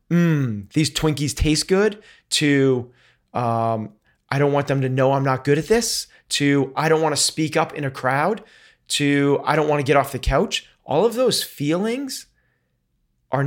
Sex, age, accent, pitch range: male, 30-49, American, 125-170 Hz